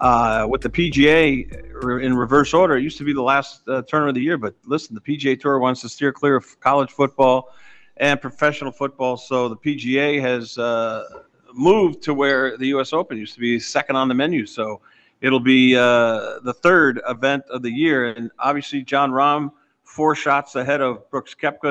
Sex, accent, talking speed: male, American, 200 wpm